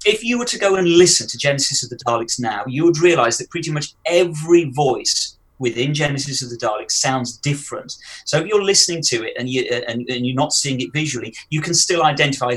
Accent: British